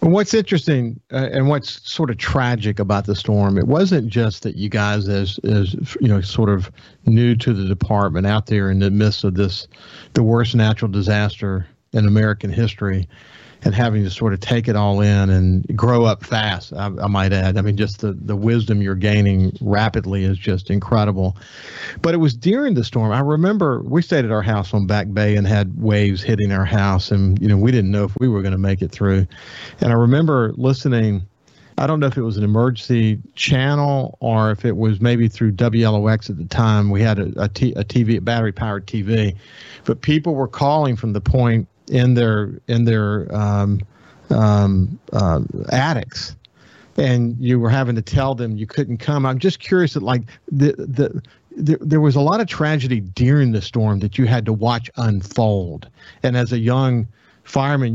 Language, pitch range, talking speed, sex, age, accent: English, 100-125 Hz, 195 wpm, male, 50-69, American